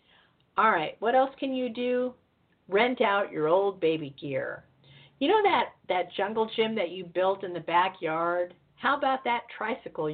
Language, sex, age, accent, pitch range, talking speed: English, female, 50-69, American, 170-235 Hz, 170 wpm